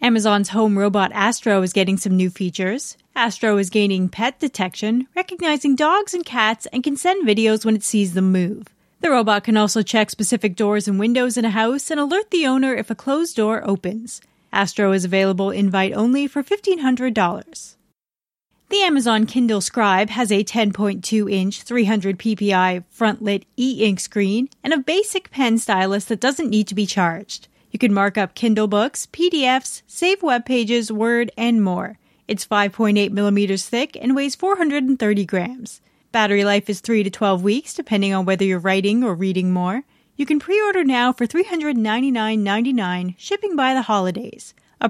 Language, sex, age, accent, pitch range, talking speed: English, female, 30-49, American, 200-260 Hz, 170 wpm